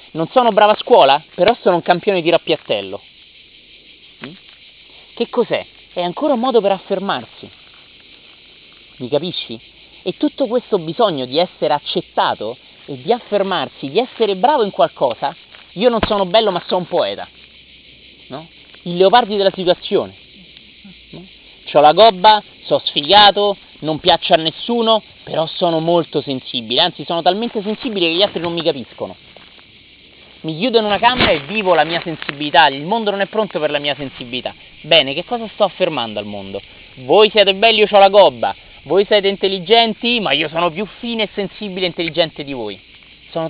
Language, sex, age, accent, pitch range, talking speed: Italian, male, 30-49, native, 165-225 Hz, 165 wpm